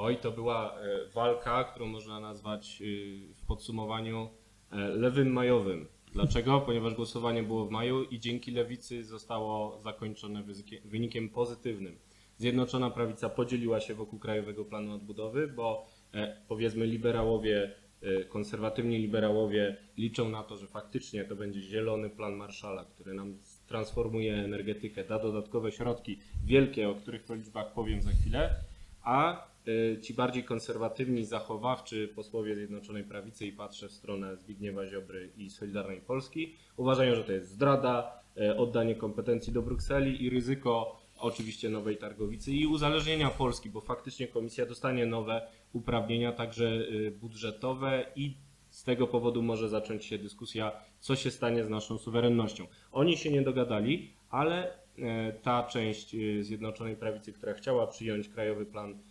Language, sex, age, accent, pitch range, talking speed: Polish, male, 20-39, native, 105-120 Hz, 135 wpm